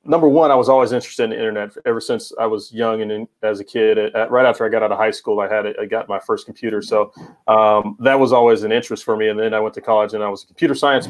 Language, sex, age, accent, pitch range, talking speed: English, male, 30-49, American, 110-160 Hz, 310 wpm